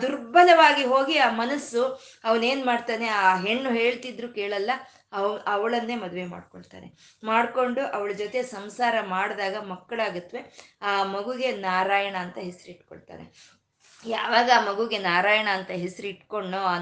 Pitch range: 195-255 Hz